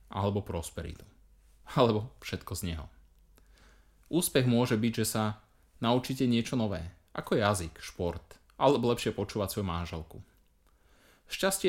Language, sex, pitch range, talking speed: Slovak, male, 85-120 Hz, 120 wpm